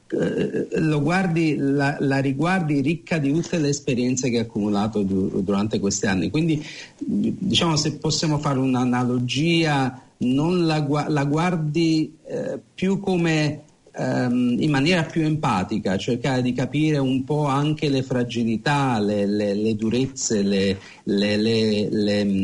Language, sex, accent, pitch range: Italian, male, native, 120-155 Hz